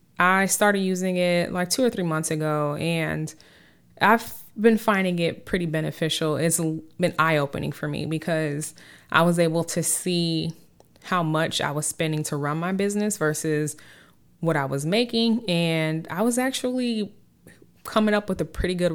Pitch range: 150-175 Hz